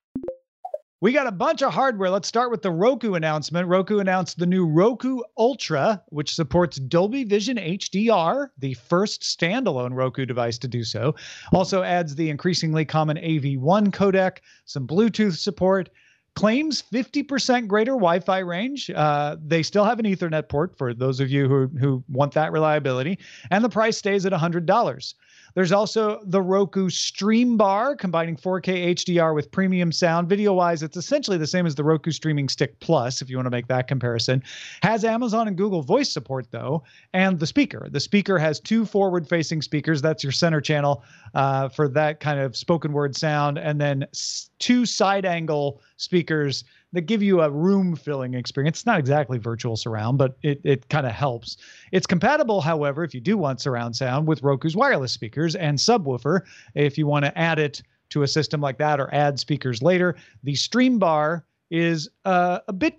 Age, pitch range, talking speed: 40-59, 145-195 Hz, 175 wpm